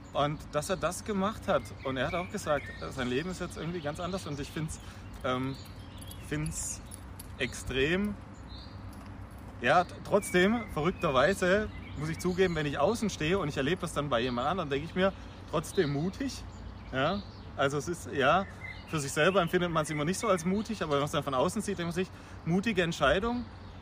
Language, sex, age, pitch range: German, male, 30-49, 105-170 Hz